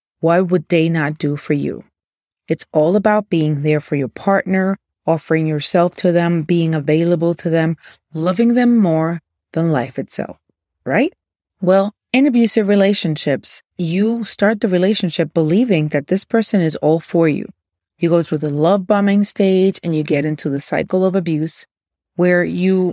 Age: 30-49